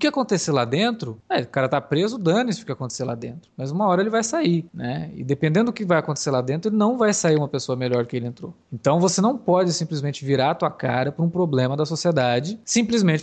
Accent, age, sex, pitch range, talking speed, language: Brazilian, 20-39, male, 135-175 Hz, 260 wpm, Portuguese